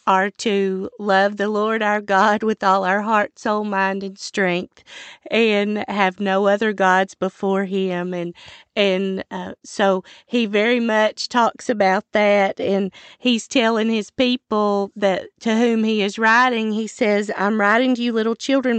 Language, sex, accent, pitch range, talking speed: English, female, American, 195-235 Hz, 165 wpm